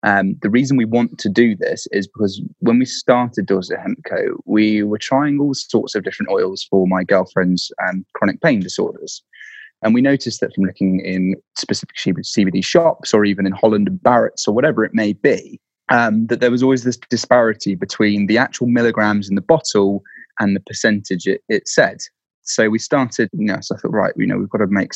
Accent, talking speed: British, 210 wpm